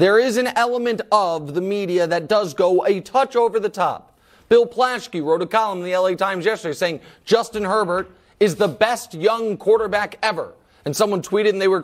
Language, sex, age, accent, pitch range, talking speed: English, male, 30-49, American, 165-210 Hz, 205 wpm